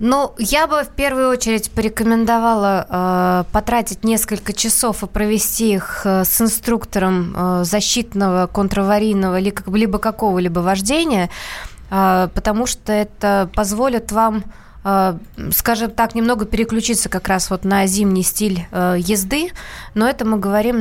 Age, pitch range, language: 20-39, 190-220 Hz, Russian